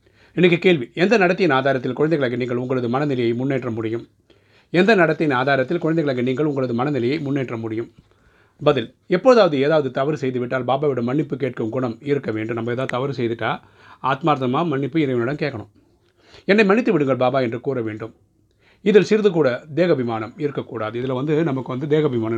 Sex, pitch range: male, 120-150 Hz